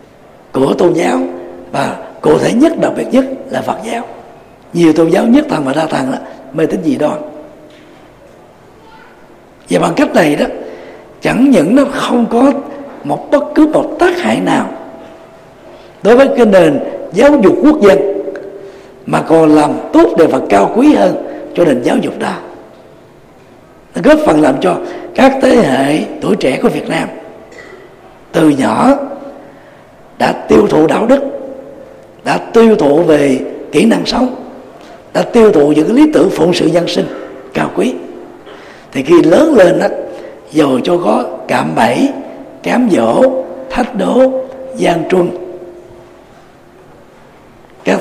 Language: Vietnamese